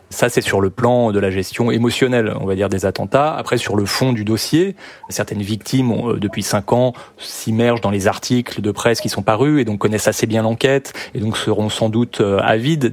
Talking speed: 220 wpm